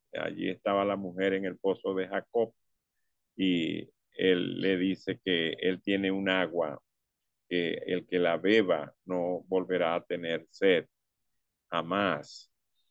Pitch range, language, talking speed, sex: 90-105 Hz, English, 135 wpm, male